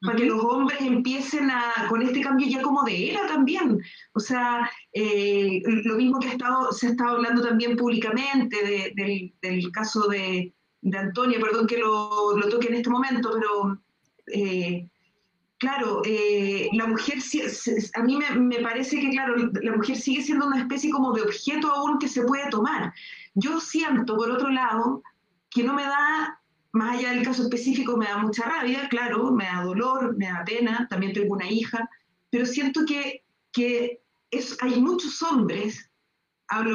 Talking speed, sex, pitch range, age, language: 180 wpm, female, 220-275 Hz, 30-49, Spanish